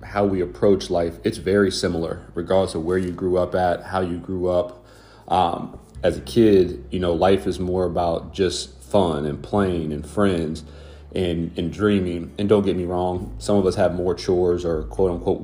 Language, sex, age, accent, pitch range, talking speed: English, male, 30-49, American, 90-105 Hz, 195 wpm